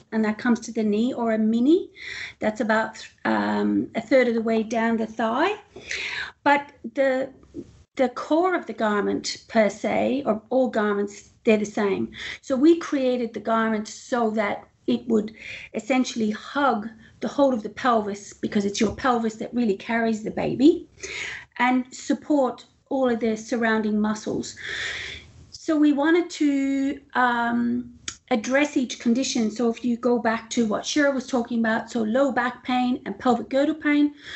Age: 40-59